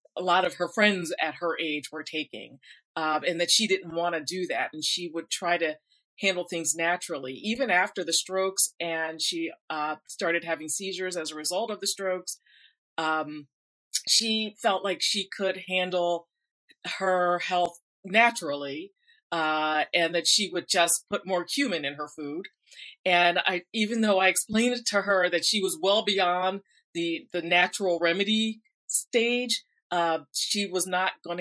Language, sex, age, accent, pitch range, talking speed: English, female, 40-59, American, 165-195 Hz, 170 wpm